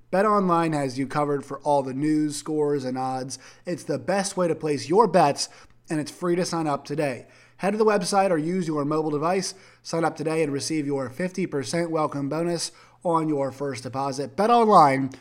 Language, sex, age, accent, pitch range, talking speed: English, male, 30-49, American, 140-165 Hz, 200 wpm